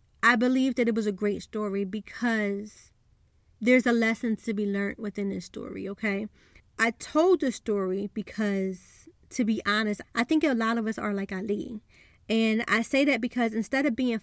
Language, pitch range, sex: English, 210-255 Hz, female